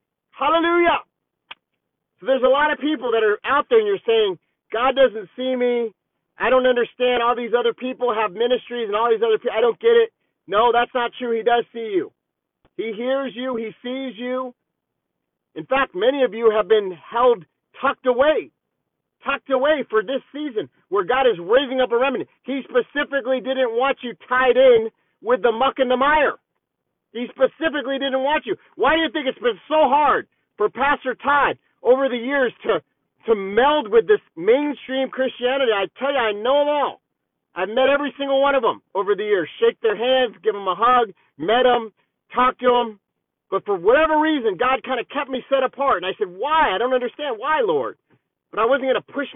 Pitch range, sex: 240-300 Hz, male